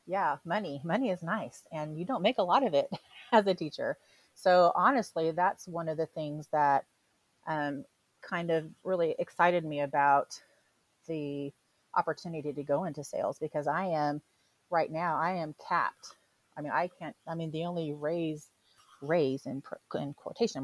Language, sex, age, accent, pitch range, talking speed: English, female, 30-49, American, 145-175 Hz, 170 wpm